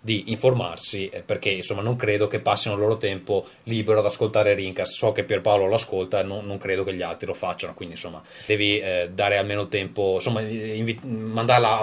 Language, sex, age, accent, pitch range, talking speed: Italian, male, 20-39, native, 100-120 Hz, 200 wpm